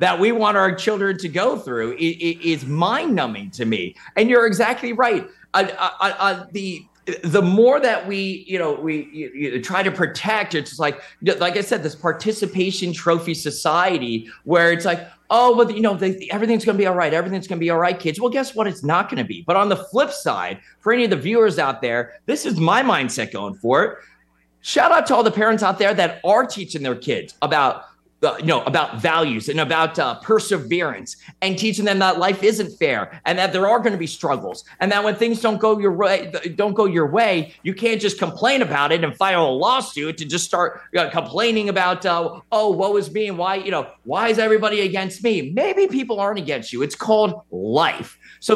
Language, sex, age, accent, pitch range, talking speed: English, male, 30-49, American, 165-220 Hz, 215 wpm